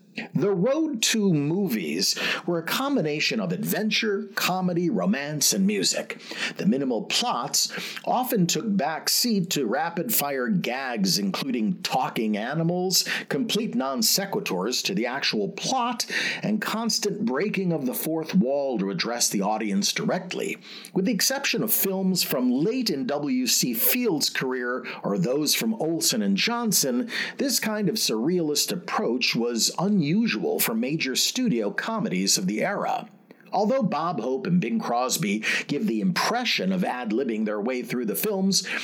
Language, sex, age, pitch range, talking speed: English, male, 50-69, 175-225 Hz, 140 wpm